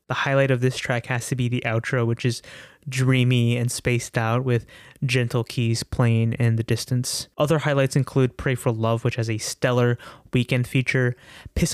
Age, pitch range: 20-39, 115-140 Hz